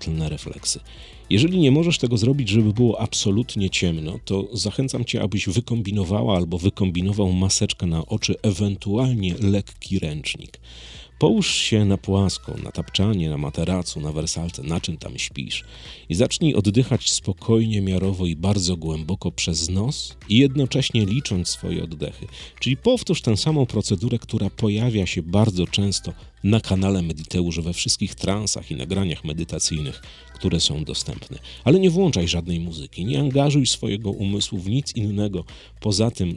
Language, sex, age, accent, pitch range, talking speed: Polish, male, 40-59, native, 90-115 Hz, 145 wpm